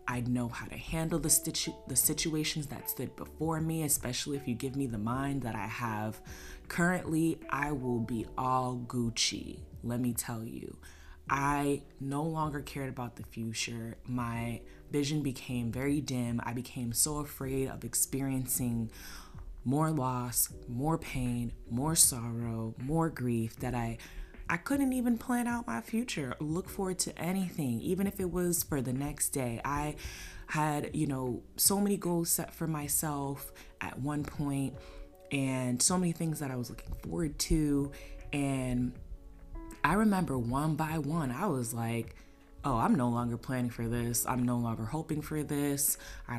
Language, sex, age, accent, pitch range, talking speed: English, female, 20-39, American, 115-155 Hz, 165 wpm